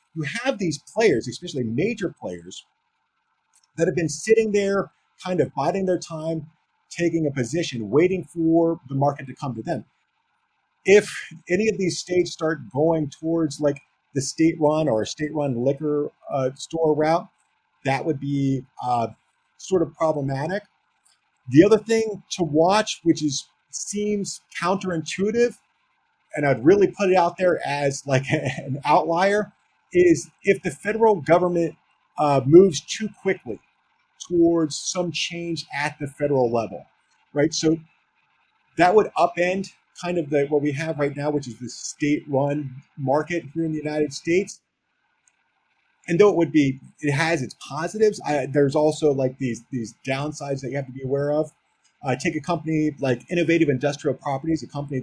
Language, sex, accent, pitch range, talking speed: English, male, American, 140-180 Hz, 160 wpm